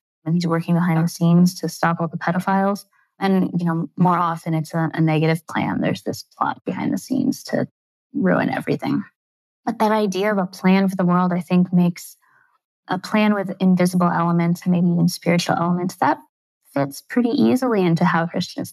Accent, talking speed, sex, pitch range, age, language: American, 190 wpm, female, 170-195 Hz, 20-39, English